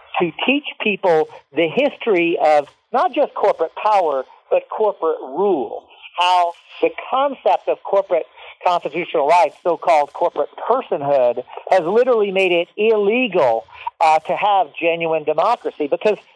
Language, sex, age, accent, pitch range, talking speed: English, male, 50-69, American, 165-255 Hz, 125 wpm